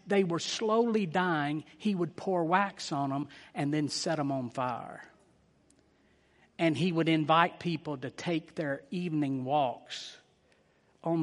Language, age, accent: English, 60-79, American